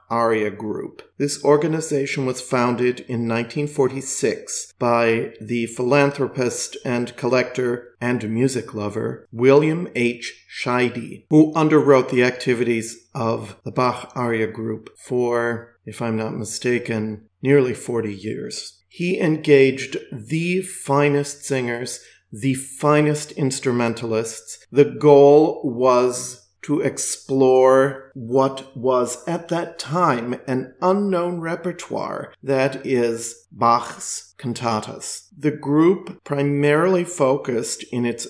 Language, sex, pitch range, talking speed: English, male, 120-140 Hz, 105 wpm